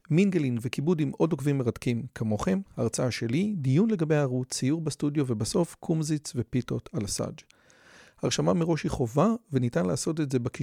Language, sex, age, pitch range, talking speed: Hebrew, male, 40-59, 130-175 Hz, 255 wpm